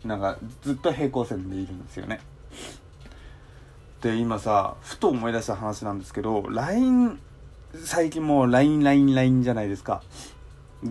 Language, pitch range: Japanese, 105-160 Hz